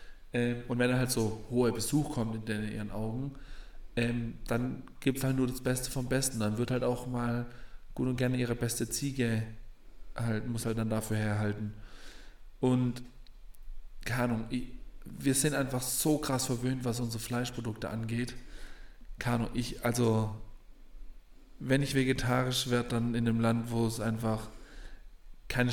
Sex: male